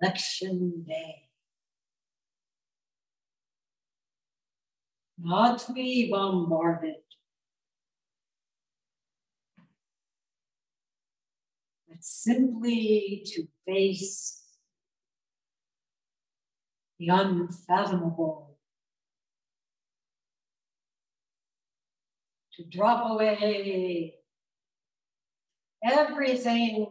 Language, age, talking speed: English, 60-79, 35 wpm